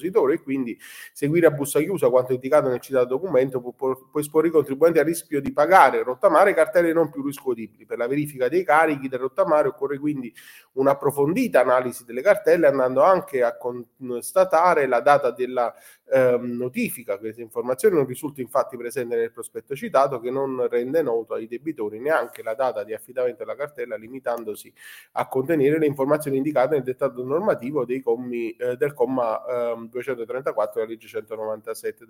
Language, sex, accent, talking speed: Italian, male, native, 165 wpm